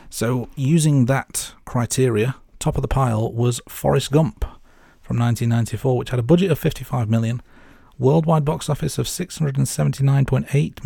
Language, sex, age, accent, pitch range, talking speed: English, male, 40-59, British, 115-145 Hz, 140 wpm